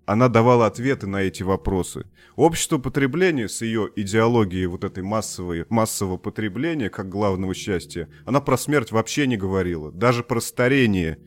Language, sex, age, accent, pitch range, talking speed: Russian, male, 30-49, native, 95-125 Hz, 150 wpm